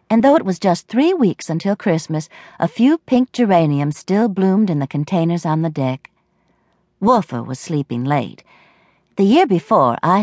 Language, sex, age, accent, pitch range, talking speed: English, female, 60-79, American, 135-195 Hz, 170 wpm